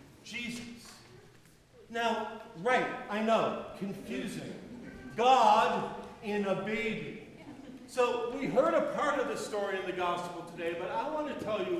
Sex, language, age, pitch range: male, English, 50-69, 195-255 Hz